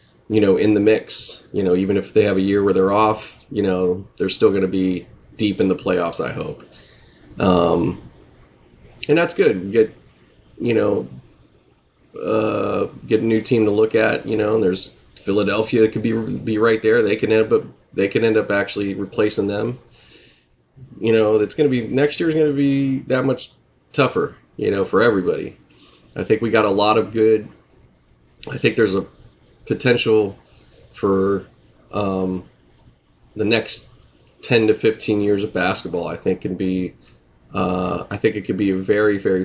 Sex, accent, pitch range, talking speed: male, American, 90-110 Hz, 185 wpm